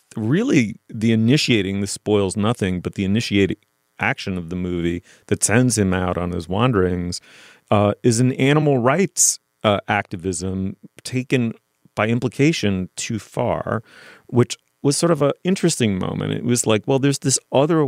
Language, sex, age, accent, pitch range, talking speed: English, male, 30-49, American, 95-125 Hz, 155 wpm